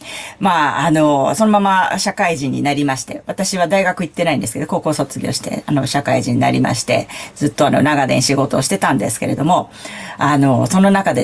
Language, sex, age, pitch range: Japanese, female, 40-59, 155-230 Hz